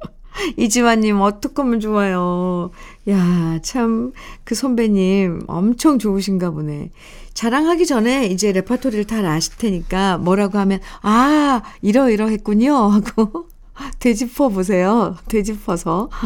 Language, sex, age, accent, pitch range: Korean, female, 50-69, native, 175-240 Hz